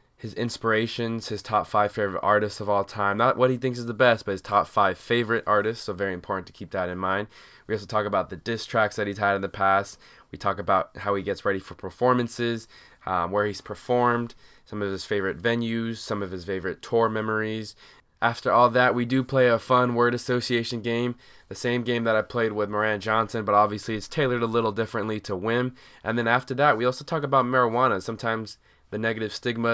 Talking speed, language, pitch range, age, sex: 220 wpm, English, 105-120 Hz, 20-39, male